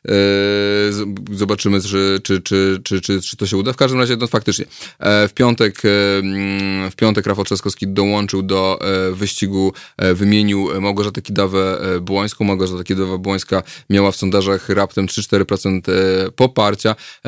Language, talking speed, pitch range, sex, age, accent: Polish, 130 wpm, 100-110 Hz, male, 20-39, native